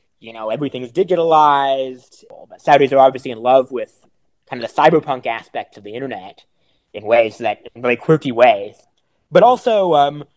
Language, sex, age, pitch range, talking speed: English, male, 20-39, 125-170 Hz, 180 wpm